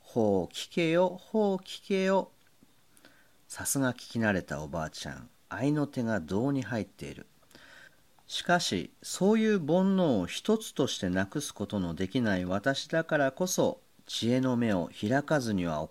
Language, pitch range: Japanese, 100-150 Hz